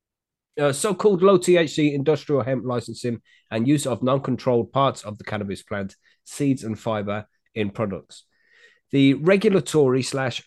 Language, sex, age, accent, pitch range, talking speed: English, male, 20-39, British, 110-140 Hz, 130 wpm